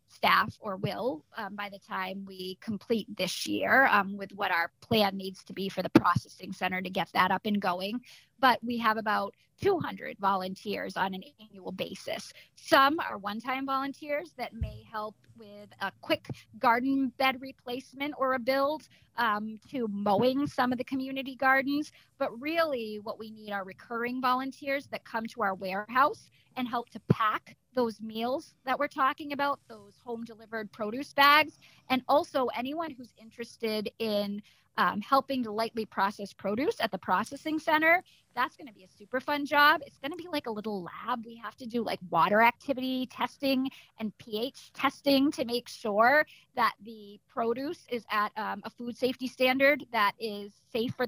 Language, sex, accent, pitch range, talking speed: English, female, American, 205-270 Hz, 175 wpm